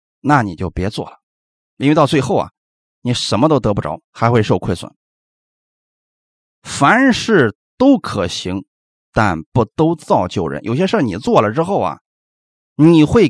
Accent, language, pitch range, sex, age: native, Chinese, 105-165 Hz, male, 30-49